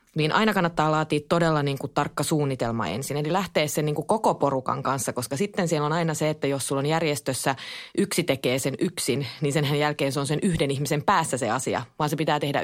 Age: 20-39